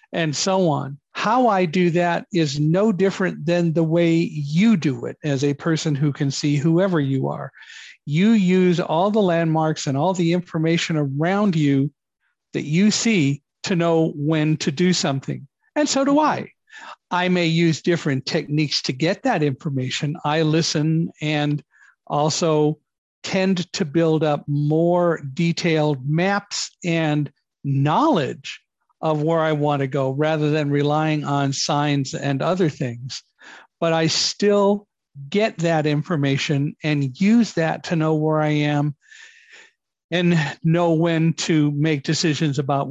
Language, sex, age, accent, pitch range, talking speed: English, male, 50-69, American, 145-175 Hz, 145 wpm